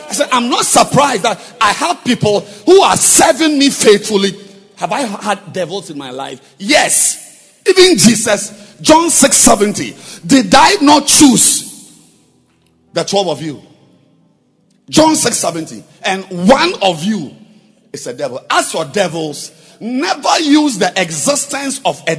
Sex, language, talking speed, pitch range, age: male, English, 140 wpm, 195-285 Hz, 50-69